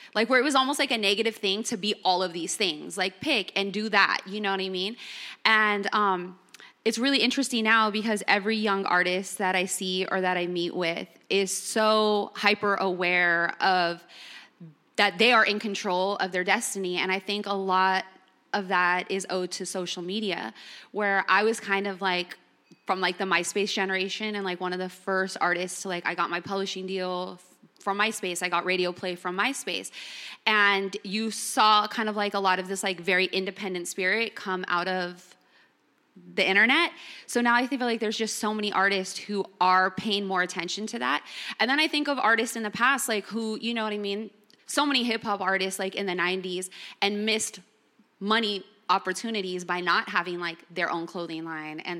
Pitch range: 185-215 Hz